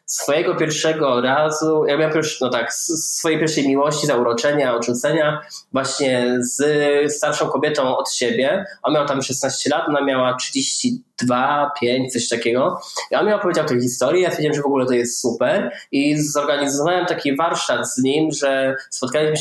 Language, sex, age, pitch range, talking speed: Polish, male, 20-39, 125-150 Hz, 160 wpm